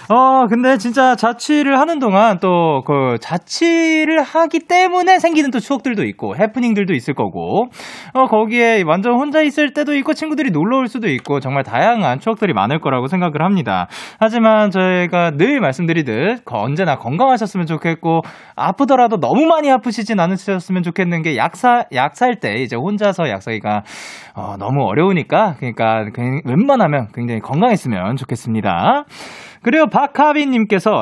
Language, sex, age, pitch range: Korean, male, 20-39, 155-260 Hz